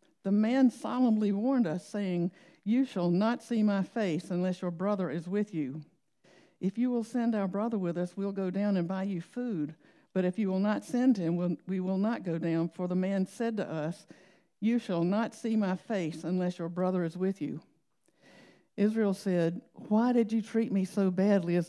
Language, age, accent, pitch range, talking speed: English, 60-79, American, 175-210 Hz, 200 wpm